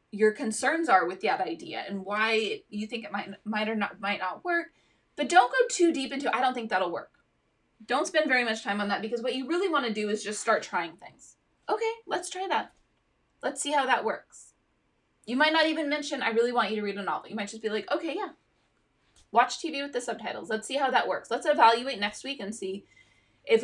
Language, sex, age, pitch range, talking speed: English, female, 20-39, 195-270 Hz, 240 wpm